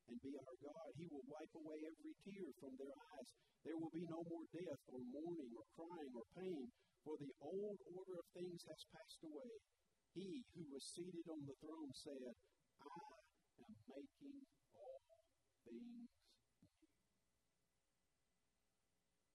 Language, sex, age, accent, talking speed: English, male, 50-69, American, 145 wpm